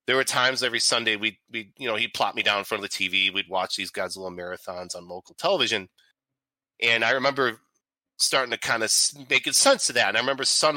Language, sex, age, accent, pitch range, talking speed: English, male, 30-49, American, 100-125 Hz, 230 wpm